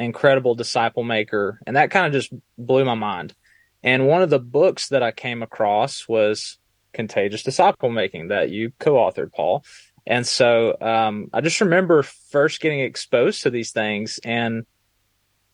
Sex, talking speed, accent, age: male, 160 wpm, American, 20-39